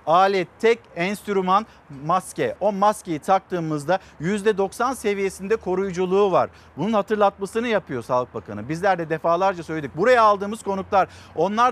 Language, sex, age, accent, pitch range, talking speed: Turkish, male, 50-69, native, 185-230 Hz, 125 wpm